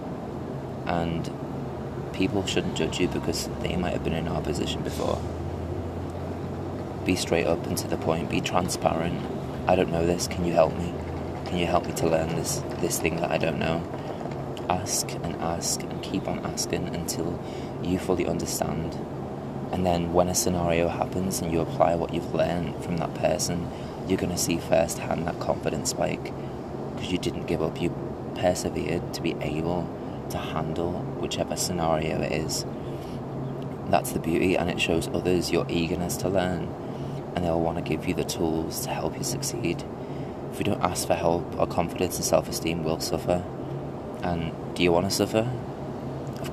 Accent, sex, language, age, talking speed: British, male, English, 20-39, 175 wpm